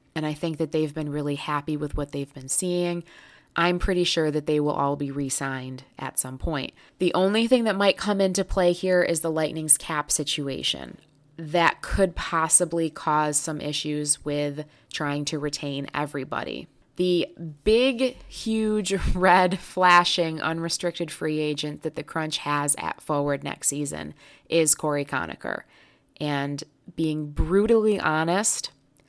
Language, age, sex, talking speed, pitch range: English, 20-39, female, 150 wpm, 150-175 Hz